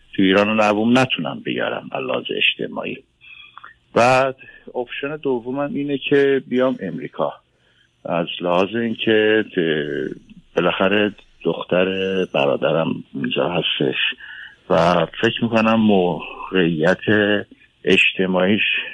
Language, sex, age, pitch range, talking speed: Persian, male, 50-69, 90-115 Hz, 85 wpm